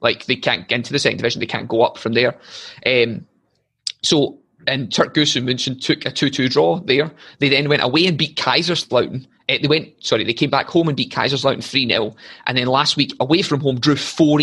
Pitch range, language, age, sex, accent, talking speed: 125-150 Hz, English, 20-39, male, British, 225 wpm